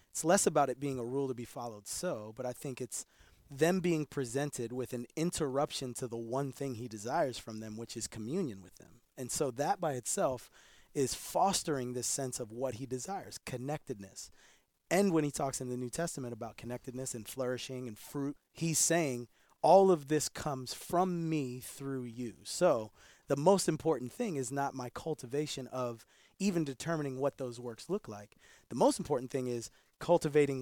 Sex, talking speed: male, 185 wpm